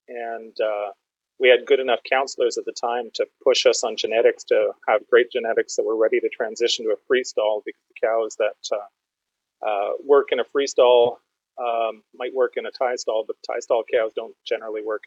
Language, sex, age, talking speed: English, male, 30-49, 205 wpm